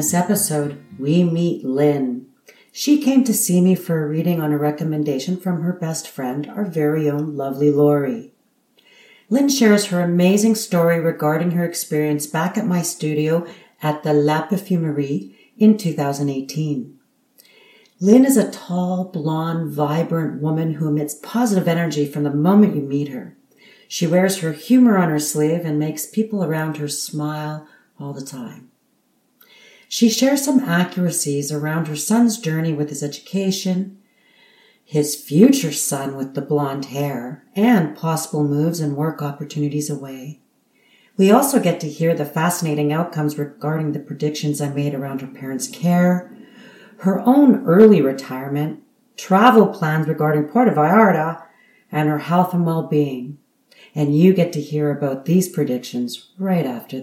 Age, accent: 40-59, American